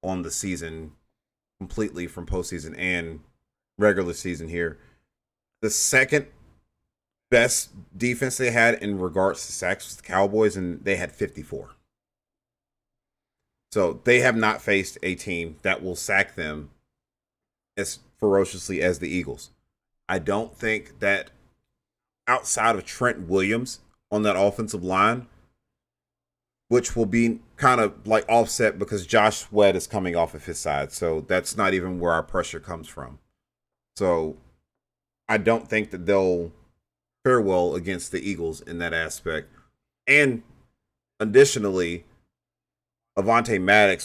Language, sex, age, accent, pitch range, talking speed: English, male, 30-49, American, 85-110 Hz, 135 wpm